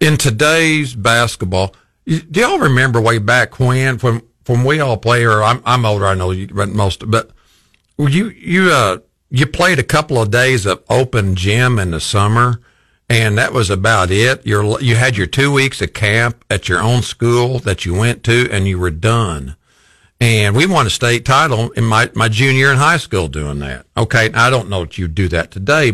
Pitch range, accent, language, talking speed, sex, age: 95-125 Hz, American, English, 205 wpm, male, 50-69